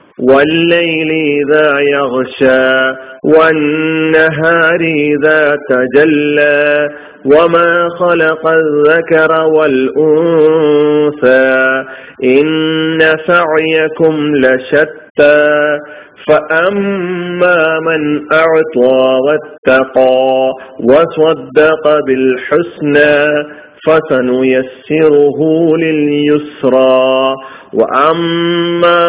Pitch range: 145-160 Hz